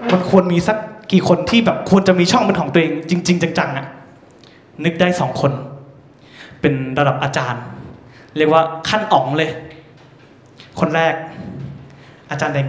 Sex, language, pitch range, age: male, Thai, 155-230 Hz, 20-39